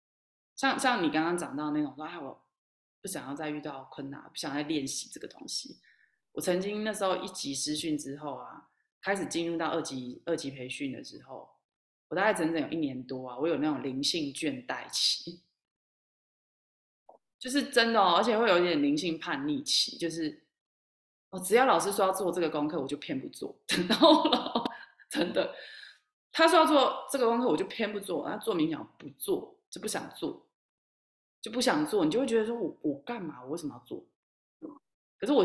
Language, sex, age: Chinese, female, 20-39